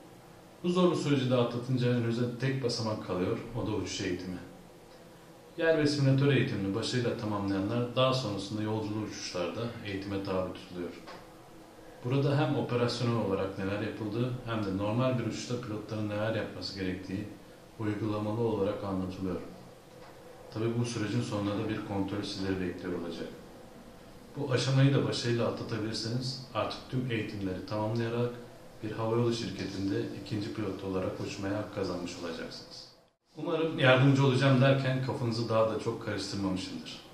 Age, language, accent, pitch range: 40-59, Turkish, native, 95-125 Hz